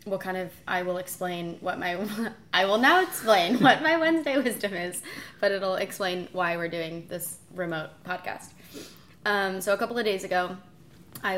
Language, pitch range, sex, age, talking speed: English, 175-205 Hz, female, 20-39, 180 wpm